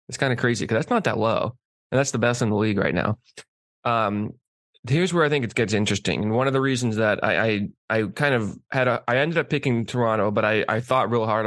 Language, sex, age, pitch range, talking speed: English, male, 20-39, 105-125 Hz, 260 wpm